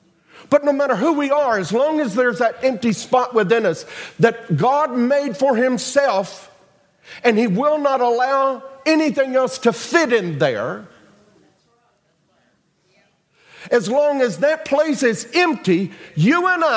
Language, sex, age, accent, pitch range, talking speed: English, male, 50-69, American, 205-275 Hz, 145 wpm